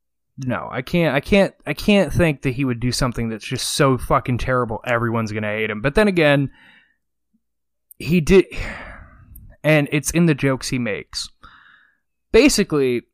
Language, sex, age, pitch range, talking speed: English, male, 20-39, 120-165 Hz, 160 wpm